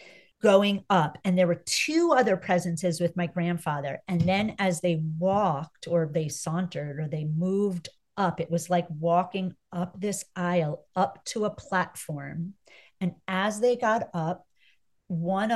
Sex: female